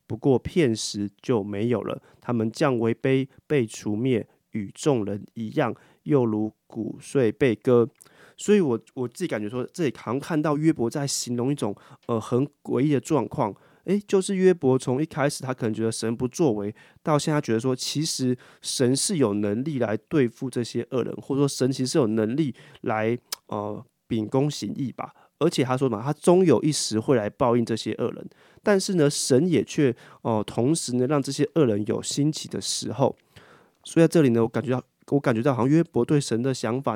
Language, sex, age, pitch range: Chinese, male, 30-49, 115-145 Hz